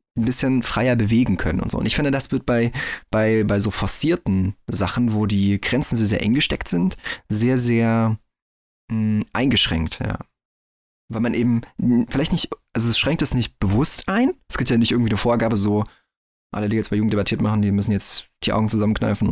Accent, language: German, German